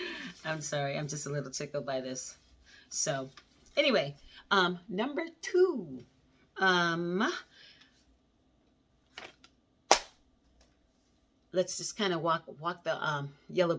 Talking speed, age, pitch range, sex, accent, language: 105 wpm, 40-59, 160-220 Hz, female, American, English